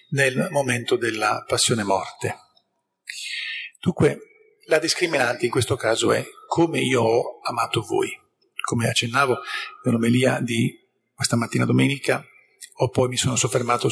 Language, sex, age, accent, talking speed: Italian, male, 50-69, native, 125 wpm